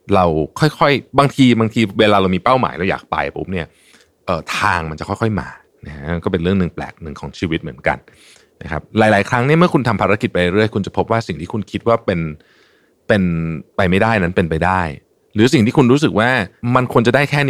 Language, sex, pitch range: Thai, male, 85-110 Hz